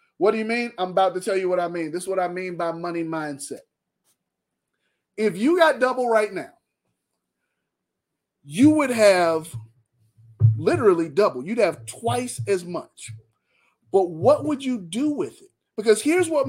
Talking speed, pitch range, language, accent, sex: 165 wpm, 190-300 Hz, English, American, male